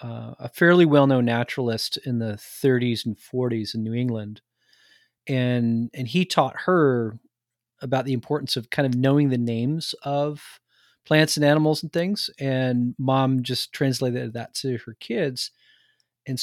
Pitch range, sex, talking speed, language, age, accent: 120-140 Hz, male, 155 wpm, English, 30-49, American